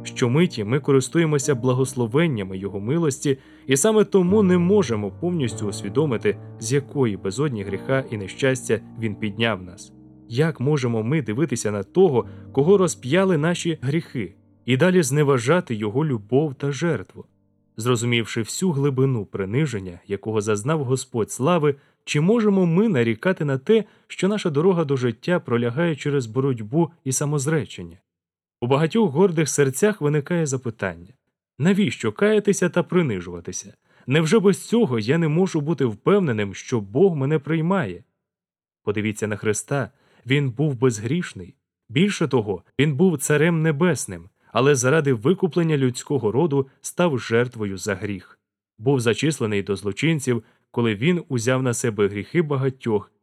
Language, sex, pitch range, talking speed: Russian, male, 110-160 Hz, 130 wpm